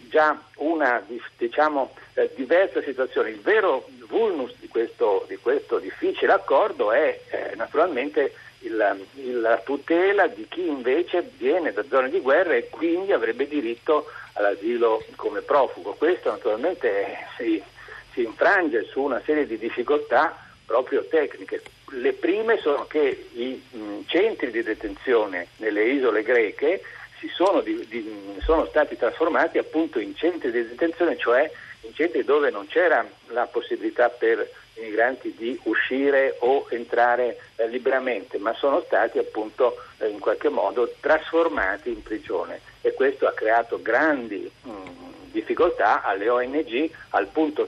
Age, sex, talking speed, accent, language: 60-79, male, 140 wpm, native, Italian